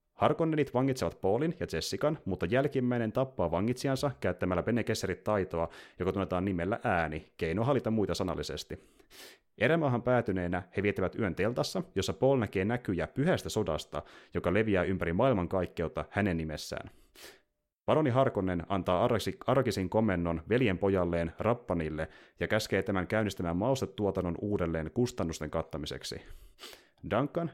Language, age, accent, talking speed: Finnish, 30-49, native, 120 wpm